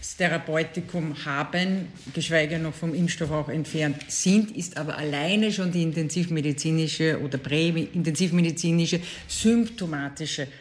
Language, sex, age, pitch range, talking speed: German, female, 50-69, 150-175 Hz, 100 wpm